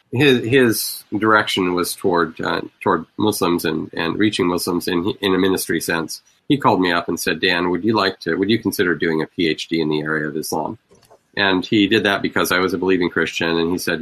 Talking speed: 225 wpm